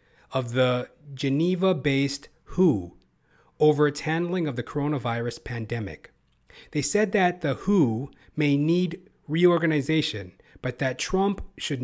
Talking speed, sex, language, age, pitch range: 115 wpm, male, English, 40-59, 125-160 Hz